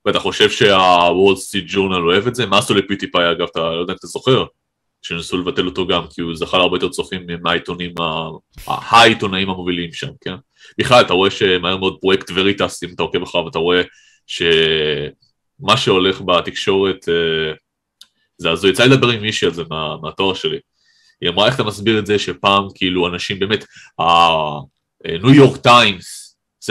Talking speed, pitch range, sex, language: 175 wpm, 95-130 Hz, male, Hebrew